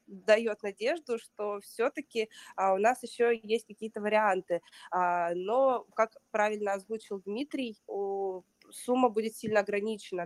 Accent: native